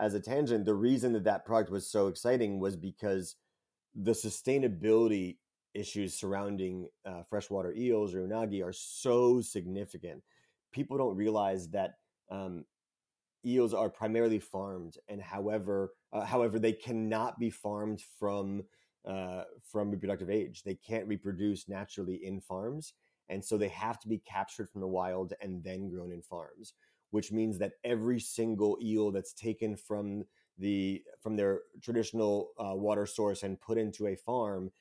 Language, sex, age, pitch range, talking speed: English, male, 30-49, 95-110 Hz, 150 wpm